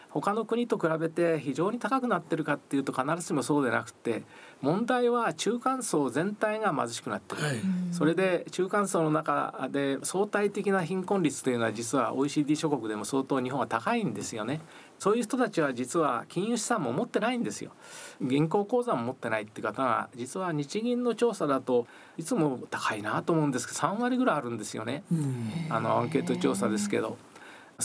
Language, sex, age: Japanese, male, 40-59